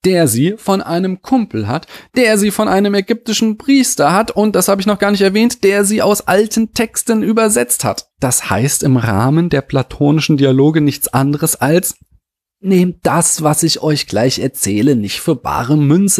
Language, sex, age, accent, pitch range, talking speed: German, male, 30-49, German, 130-200 Hz, 180 wpm